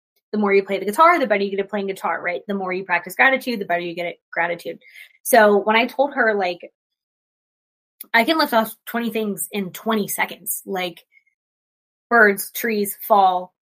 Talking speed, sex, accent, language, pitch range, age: 195 wpm, female, American, English, 200-270 Hz, 20-39